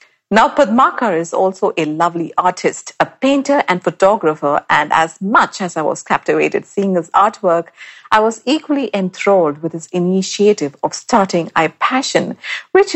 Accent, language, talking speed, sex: Indian, English, 155 wpm, female